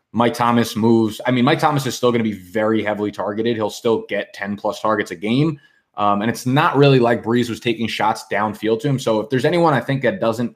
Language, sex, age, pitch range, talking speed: English, male, 20-39, 105-125 Hz, 250 wpm